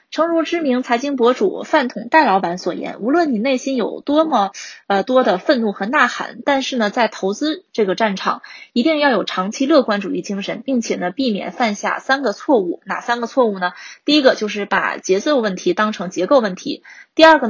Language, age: Chinese, 20-39